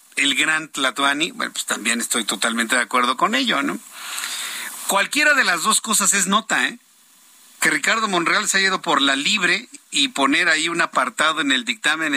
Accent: Mexican